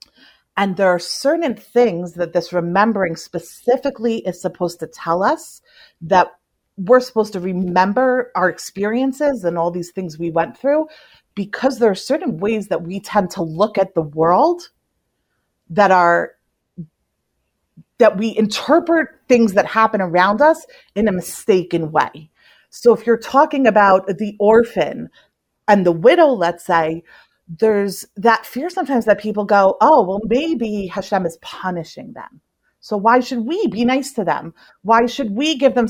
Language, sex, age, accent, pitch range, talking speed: English, female, 30-49, American, 180-240 Hz, 155 wpm